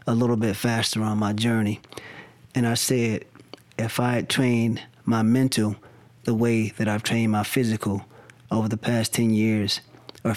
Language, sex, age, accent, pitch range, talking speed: English, male, 20-39, American, 110-125 Hz, 170 wpm